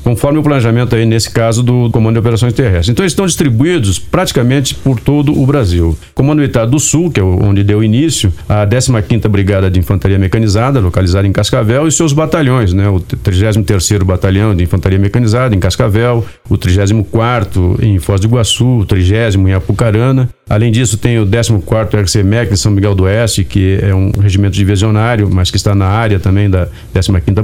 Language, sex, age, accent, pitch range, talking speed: Portuguese, male, 50-69, Brazilian, 100-120 Hz, 185 wpm